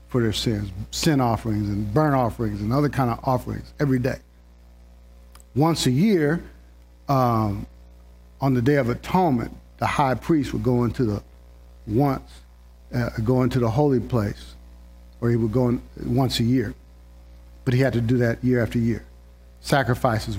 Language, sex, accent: English, male, American